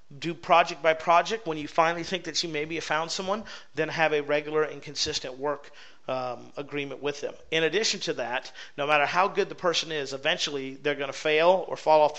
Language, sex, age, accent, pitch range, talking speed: English, male, 40-59, American, 145-170 Hz, 220 wpm